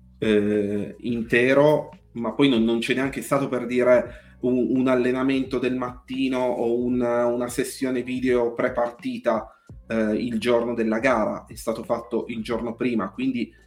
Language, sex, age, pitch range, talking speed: Italian, male, 30-49, 115-140 Hz, 155 wpm